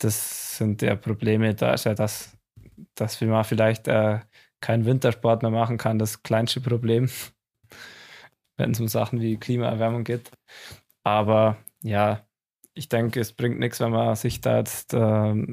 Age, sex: 20-39, male